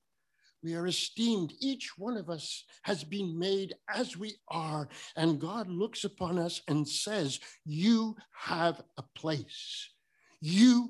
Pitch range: 160-240 Hz